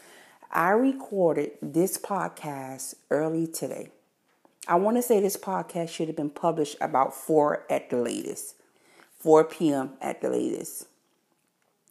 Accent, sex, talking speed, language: American, female, 130 wpm, English